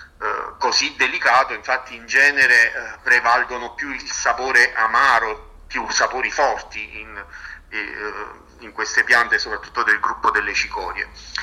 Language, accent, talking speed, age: Italian, native, 115 wpm, 40-59